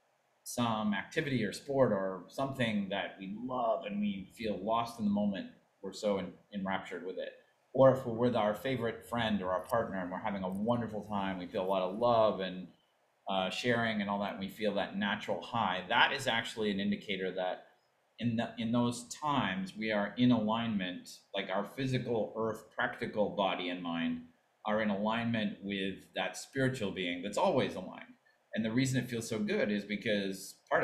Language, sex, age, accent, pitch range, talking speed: English, male, 30-49, American, 100-120 Hz, 190 wpm